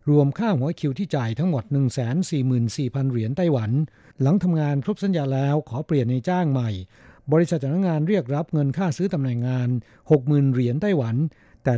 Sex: male